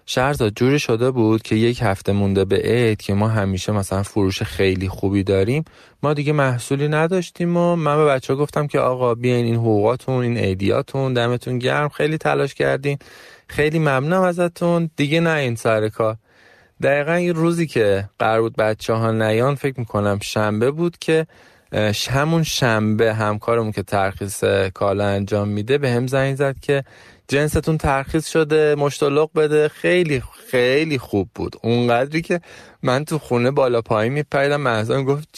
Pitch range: 105-145 Hz